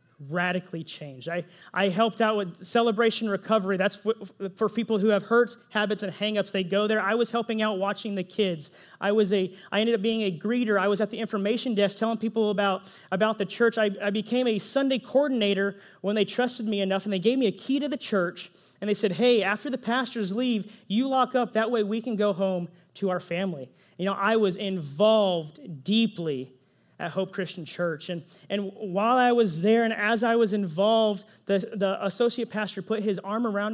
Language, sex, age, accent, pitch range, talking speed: English, male, 30-49, American, 190-230 Hz, 215 wpm